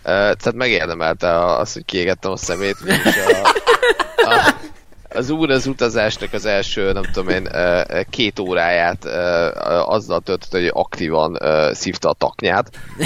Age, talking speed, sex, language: 20-39, 140 wpm, male, Hungarian